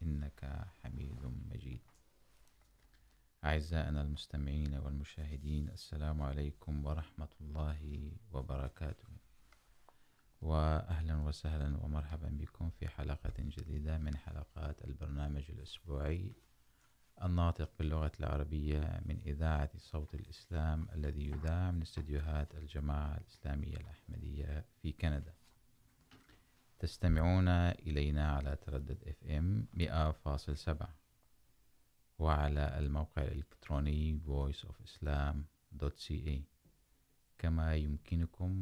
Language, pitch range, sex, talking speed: Urdu, 75-85 Hz, male, 80 wpm